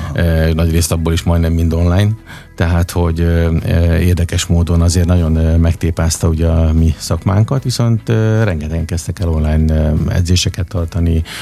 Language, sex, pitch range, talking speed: Hungarian, male, 80-95 Hz, 130 wpm